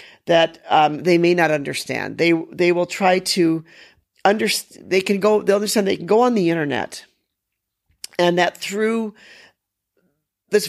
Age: 40-59